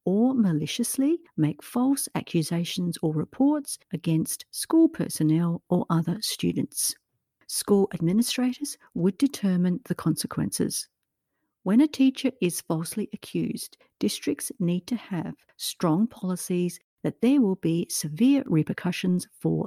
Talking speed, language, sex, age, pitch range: 115 wpm, English, female, 50-69, 170-240 Hz